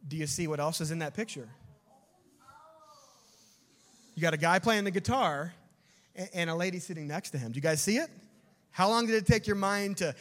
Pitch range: 155-205 Hz